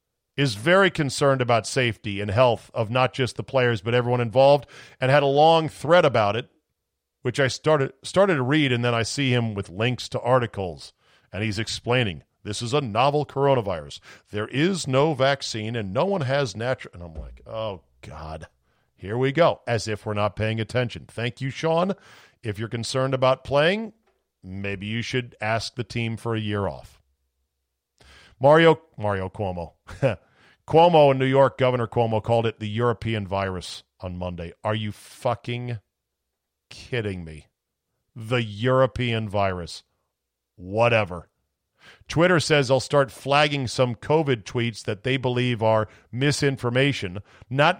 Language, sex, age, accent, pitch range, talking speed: English, male, 40-59, American, 105-135 Hz, 160 wpm